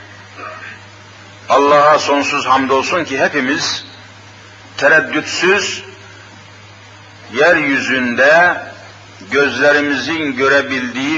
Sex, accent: male, native